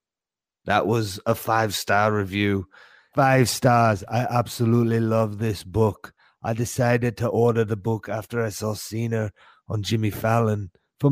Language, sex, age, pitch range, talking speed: English, male, 30-49, 105-120 Hz, 140 wpm